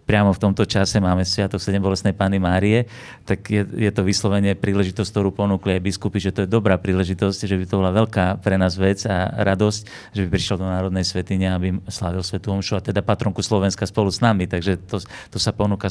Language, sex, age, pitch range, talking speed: Slovak, male, 40-59, 95-115 Hz, 215 wpm